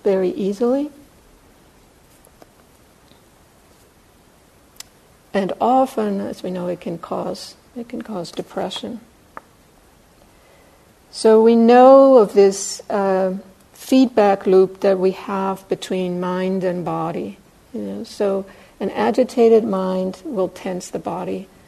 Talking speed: 100 wpm